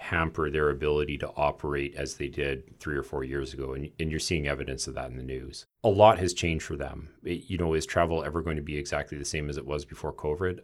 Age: 40-59